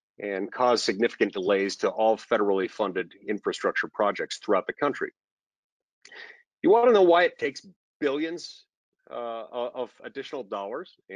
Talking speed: 135 wpm